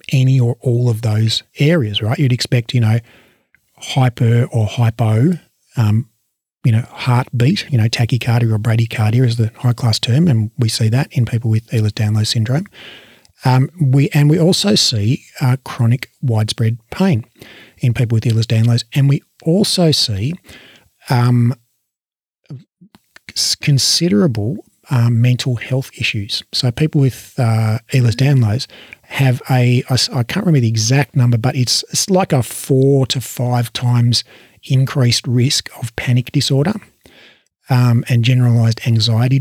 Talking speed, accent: 145 wpm, Australian